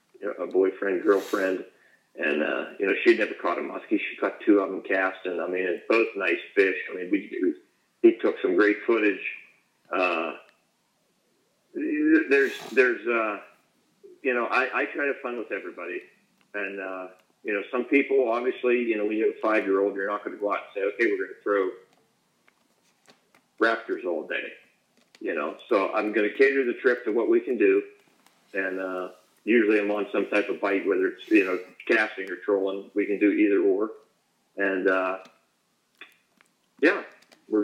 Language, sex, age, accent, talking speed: English, male, 50-69, American, 185 wpm